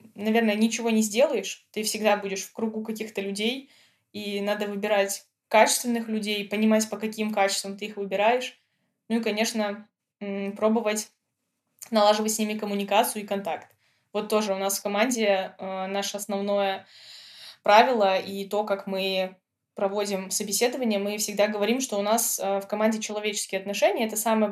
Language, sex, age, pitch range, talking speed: Russian, female, 20-39, 195-220 Hz, 150 wpm